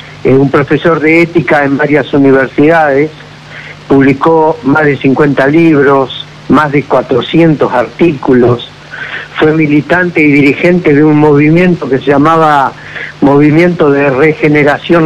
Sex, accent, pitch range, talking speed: male, Argentinian, 135-165 Hz, 120 wpm